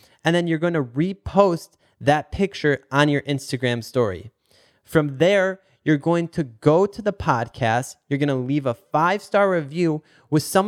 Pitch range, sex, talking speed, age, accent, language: 125-160 Hz, male, 155 wpm, 20-39, American, English